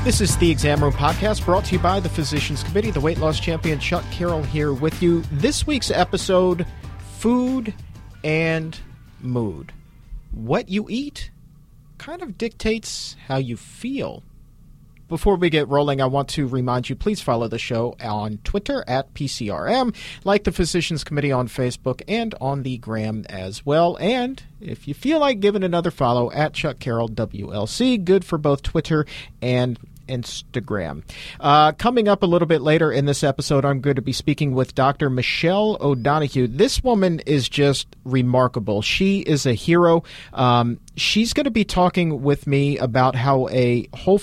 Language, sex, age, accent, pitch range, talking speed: English, male, 40-59, American, 125-175 Hz, 170 wpm